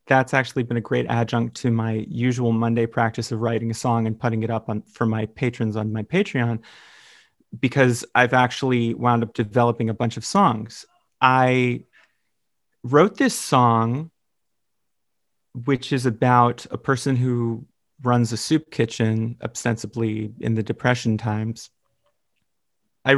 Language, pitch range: English, 115-130 Hz